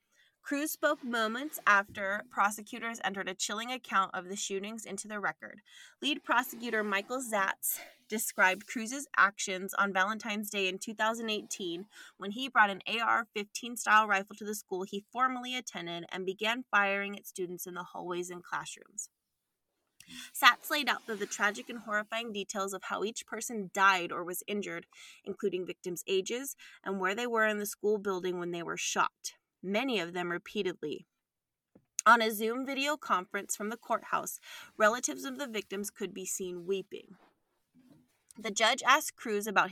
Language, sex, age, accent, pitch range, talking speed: English, female, 20-39, American, 195-235 Hz, 160 wpm